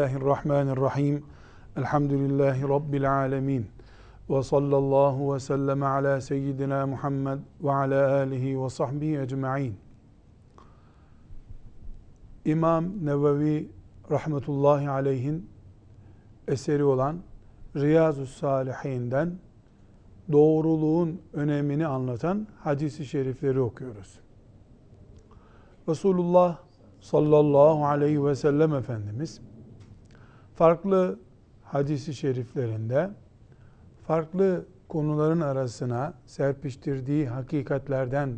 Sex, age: male, 50-69